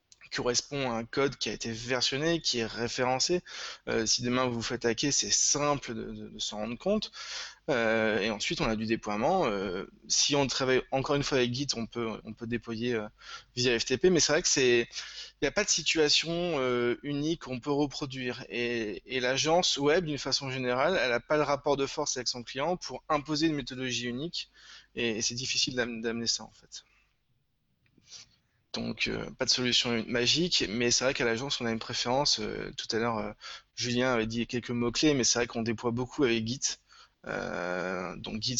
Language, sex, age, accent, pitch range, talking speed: French, male, 20-39, French, 115-140 Hz, 205 wpm